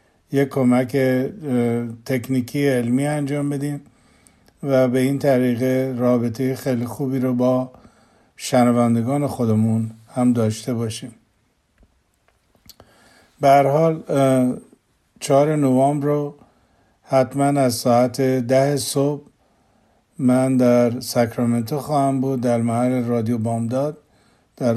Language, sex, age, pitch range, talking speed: Persian, male, 50-69, 125-140 Hz, 95 wpm